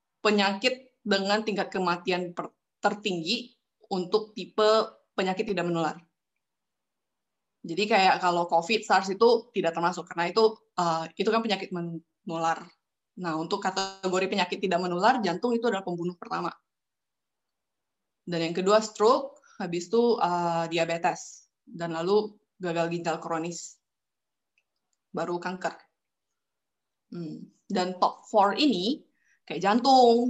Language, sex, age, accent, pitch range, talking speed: Indonesian, female, 20-39, native, 175-230 Hz, 115 wpm